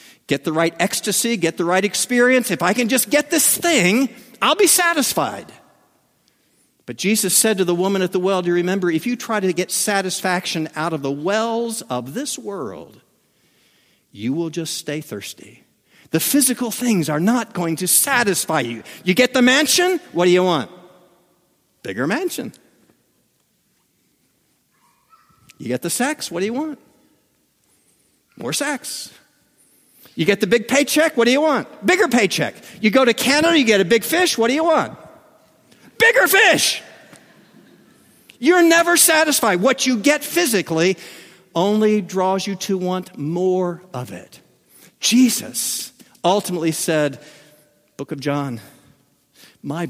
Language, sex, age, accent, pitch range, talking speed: English, male, 50-69, American, 170-255 Hz, 150 wpm